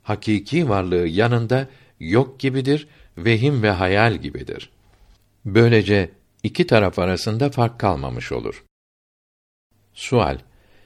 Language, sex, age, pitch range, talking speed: Turkish, male, 60-79, 100-125 Hz, 95 wpm